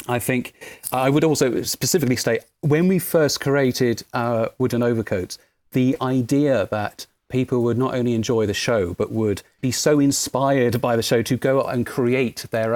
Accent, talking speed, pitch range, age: British, 180 wpm, 105-125 Hz, 40-59